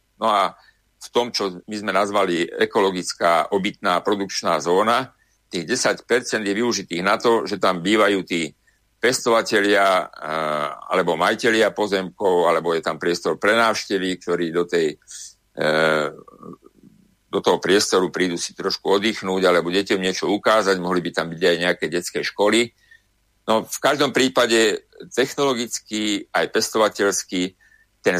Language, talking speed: Slovak, 130 wpm